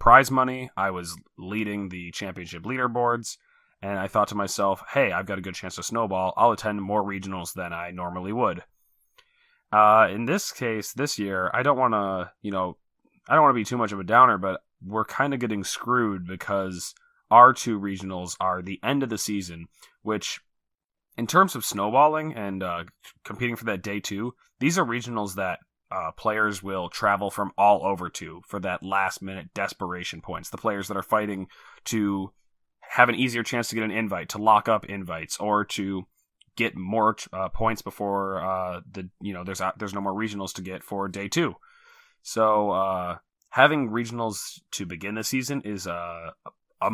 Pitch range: 95-115 Hz